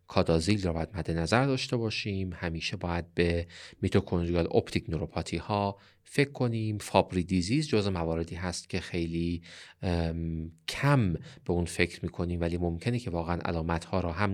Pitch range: 85-100 Hz